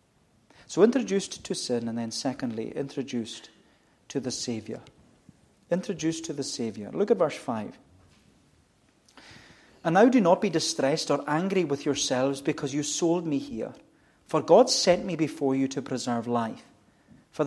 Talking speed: 150 wpm